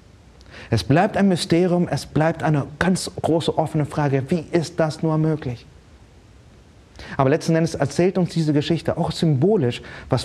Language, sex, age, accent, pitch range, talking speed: German, male, 30-49, German, 120-165 Hz, 150 wpm